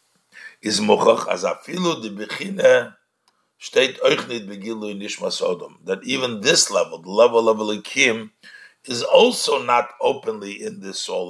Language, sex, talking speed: English, male, 85 wpm